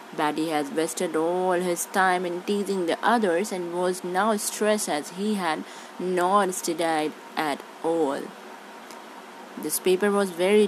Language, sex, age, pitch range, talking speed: English, female, 20-39, 165-200 Hz, 140 wpm